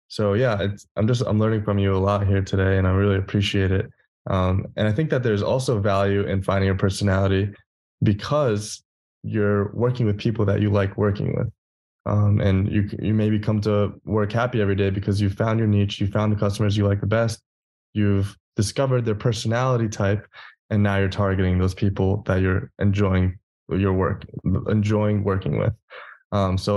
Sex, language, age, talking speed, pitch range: male, English, 20-39, 190 wpm, 100-110 Hz